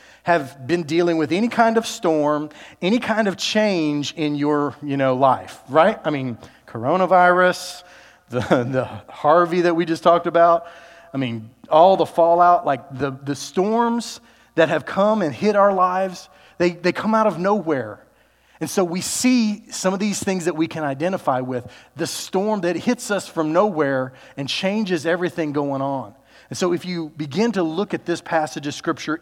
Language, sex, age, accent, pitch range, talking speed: English, male, 40-59, American, 140-180 Hz, 180 wpm